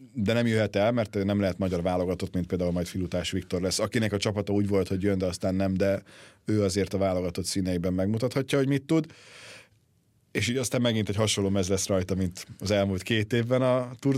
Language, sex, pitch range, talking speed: Hungarian, male, 95-120 Hz, 215 wpm